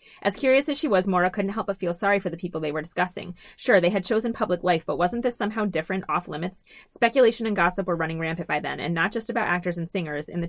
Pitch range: 165-200 Hz